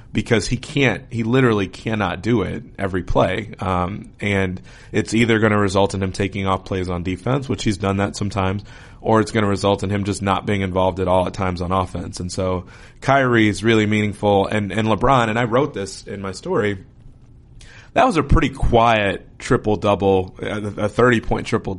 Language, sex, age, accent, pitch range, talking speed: English, male, 30-49, American, 95-115 Hz, 200 wpm